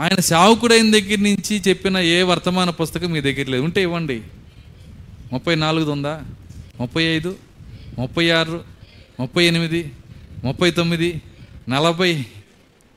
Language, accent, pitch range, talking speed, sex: Telugu, native, 120-190 Hz, 115 wpm, male